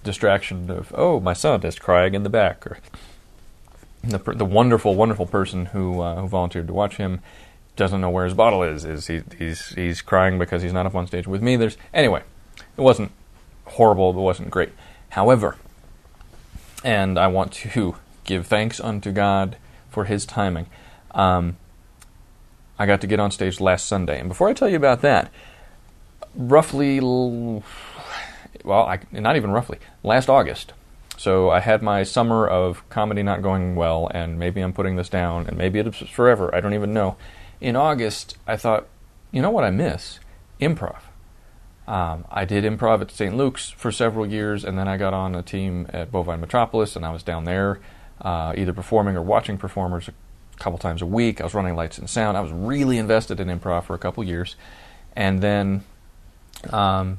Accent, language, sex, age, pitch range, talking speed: American, English, male, 30-49, 90-105 Hz, 185 wpm